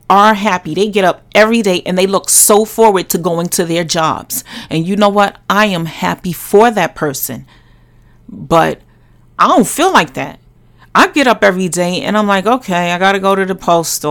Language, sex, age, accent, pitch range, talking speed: English, female, 40-59, American, 175-235 Hz, 205 wpm